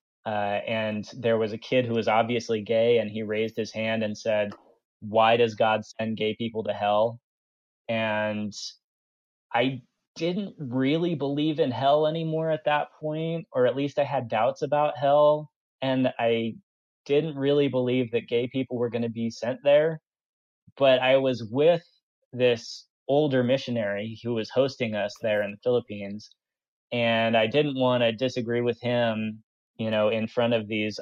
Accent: American